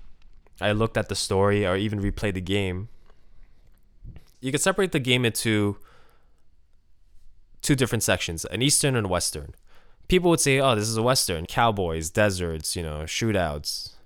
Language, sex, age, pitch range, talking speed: English, male, 10-29, 90-115 Hz, 155 wpm